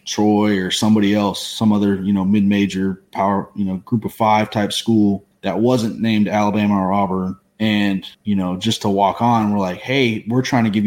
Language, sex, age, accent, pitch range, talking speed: English, male, 30-49, American, 100-115 Hz, 210 wpm